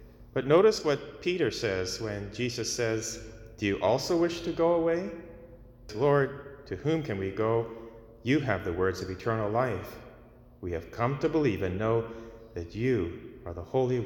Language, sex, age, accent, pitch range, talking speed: English, male, 30-49, American, 100-130 Hz, 170 wpm